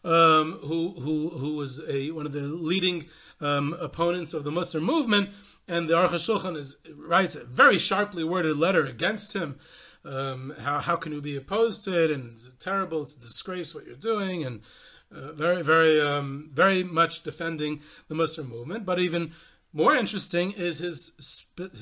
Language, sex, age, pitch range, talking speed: English, male, 40-59, 155-185 Hz, 180 wpm